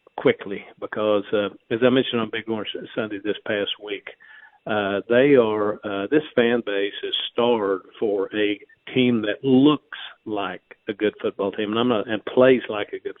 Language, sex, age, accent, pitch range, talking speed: English, male, 50-69, American, 105-125 Hz, 180 wpm